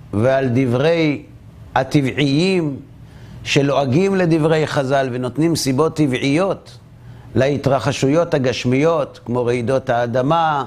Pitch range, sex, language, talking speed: 130-180 Hz, male, Hebrew, 80 wpm